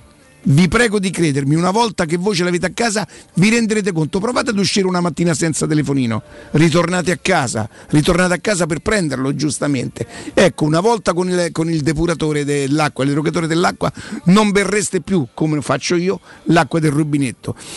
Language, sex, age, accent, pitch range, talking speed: Italian, male, 50-69, native, 150-195 Hz, 170 wpm